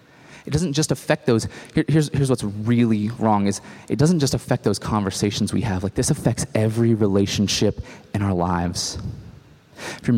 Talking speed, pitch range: 170 wpm, 105-135 Hz